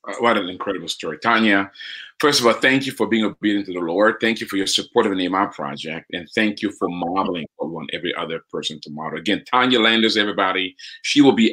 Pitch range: 90-110 Hz